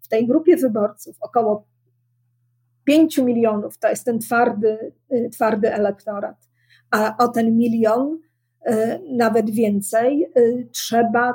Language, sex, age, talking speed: Polish, female, 40-59, 105 wpm